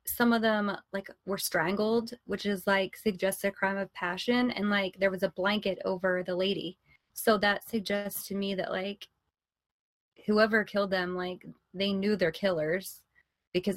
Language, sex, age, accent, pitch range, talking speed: English, female, 20-39, American, 190-220 Hz, 170 wpm